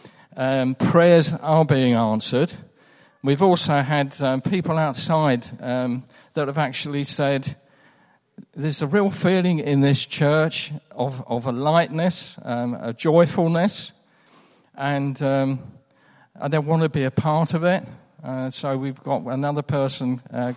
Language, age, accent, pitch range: English, 50-69, British, 125-155 Hz